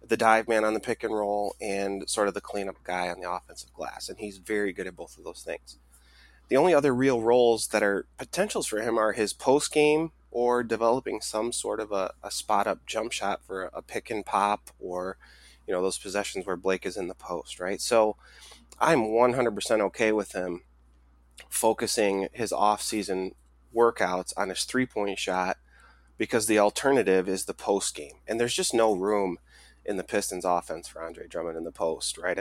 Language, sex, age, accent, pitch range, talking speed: English, male, 20-39, American, 95-115 Hz, 200 wpm